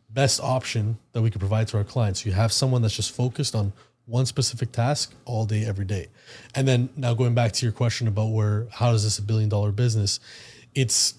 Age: 20-39